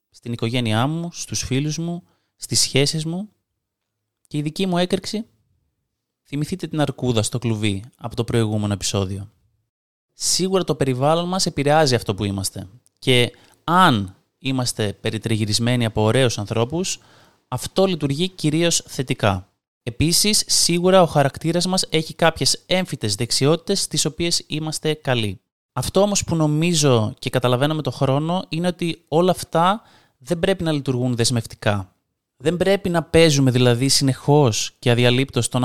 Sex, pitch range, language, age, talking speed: male, 110-155 Hz, Greek, 20-39, 140 wpm